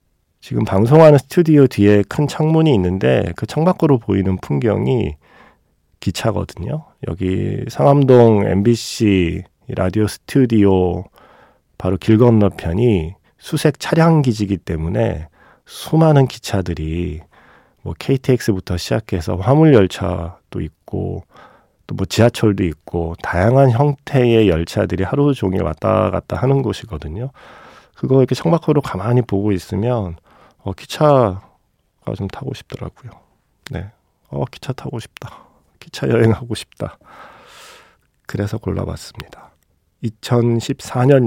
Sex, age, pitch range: male, 40-59, 90-125 Hz